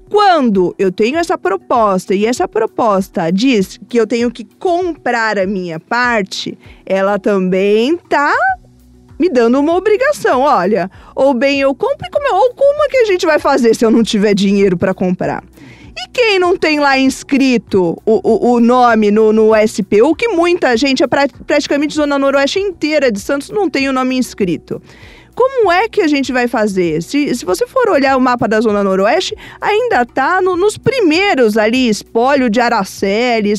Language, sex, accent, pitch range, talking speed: Portuguese, female, Brazilian, 220-320 Hz, 180 wpm